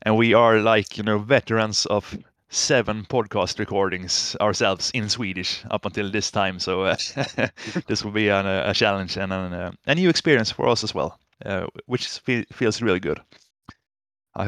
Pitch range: 100-130 Hz